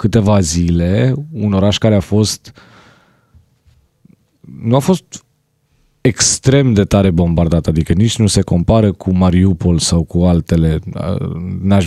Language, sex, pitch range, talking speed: Romanian, male, 95-120 Hz, 125 wpm